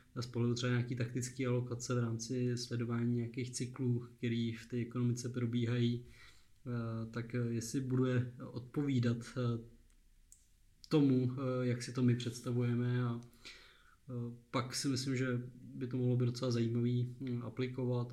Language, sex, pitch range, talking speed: Czech, male, 115-125 Hz, 120 wpm